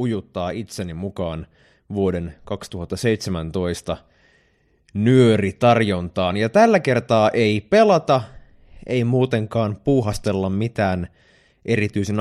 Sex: male